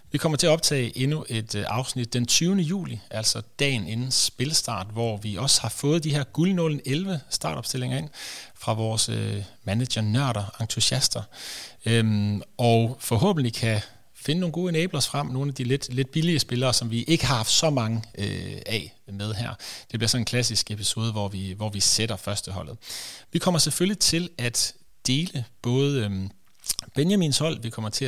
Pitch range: 110-140 Hz